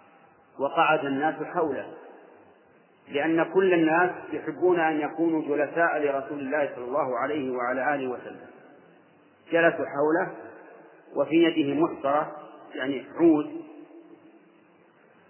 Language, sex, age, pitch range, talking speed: Arabic, male, 40-59, 140-175 Hz, 100 wpm